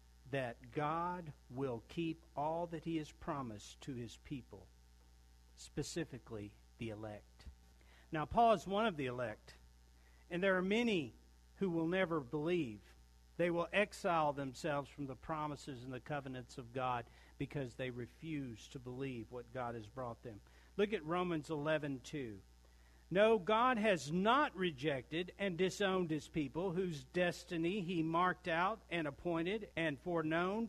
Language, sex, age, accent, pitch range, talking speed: English, male, 50-69, American, 120-185 Hz, 145 wpm